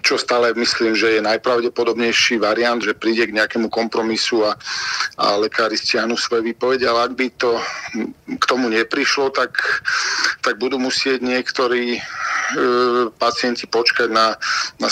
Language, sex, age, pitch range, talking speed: Slovak, male, 50-69, 110-120 Hz, 140 wpm